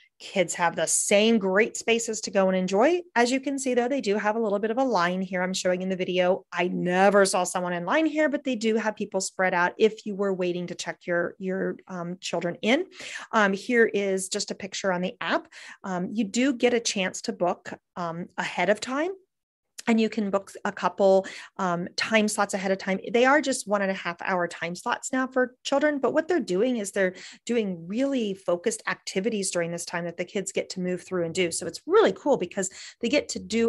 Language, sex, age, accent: English, female, 30-49, American